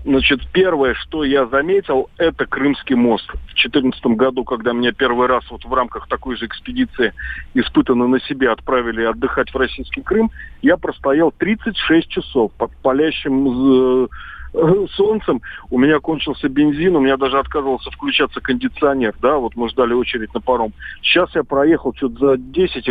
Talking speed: 155 wpm